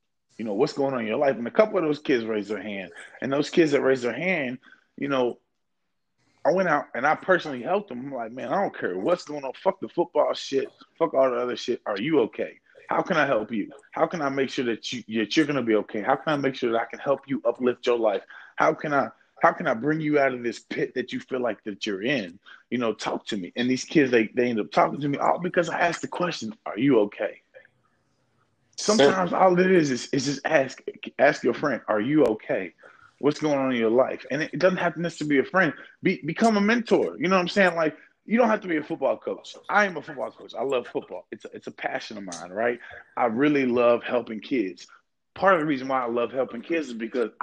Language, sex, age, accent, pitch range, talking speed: English, male, 30-49, American, 120-175 Hz, 265 wpm